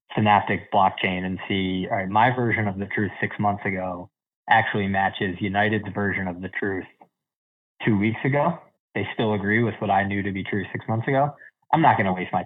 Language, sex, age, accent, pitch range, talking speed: English, male, 20-39, American, 95-110 Hz, 205 wpm